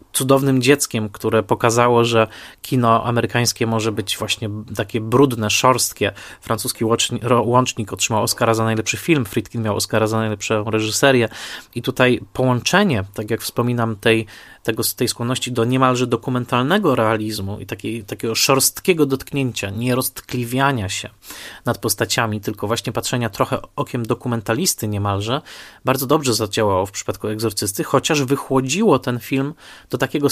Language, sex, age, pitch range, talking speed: Polish, male, 20-39, 110-130 Hz, 135 wpm